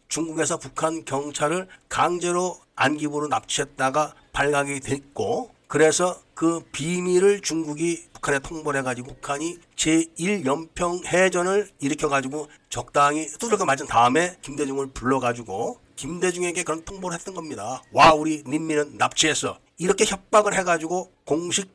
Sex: male